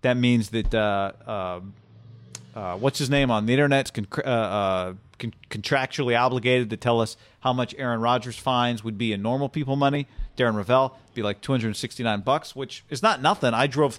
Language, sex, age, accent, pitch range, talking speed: English, male, 40-59, American, 120-160 Hz, 195 wpm